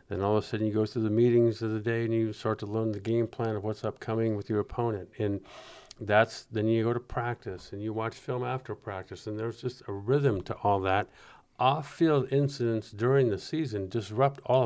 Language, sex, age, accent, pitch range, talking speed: English, male, 50-69, American, 110-130 Hz, 225 wpm